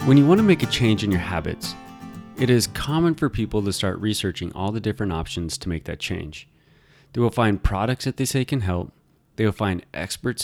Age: 20-39